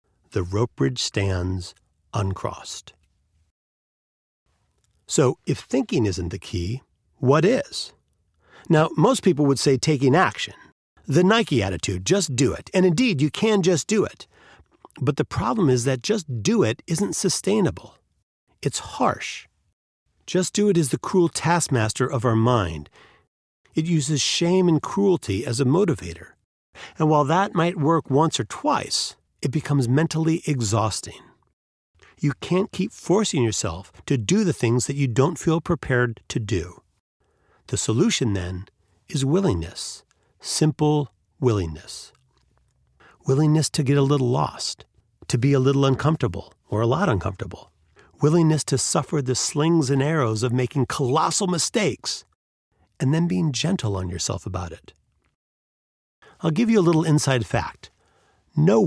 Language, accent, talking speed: English, American, 145 wpm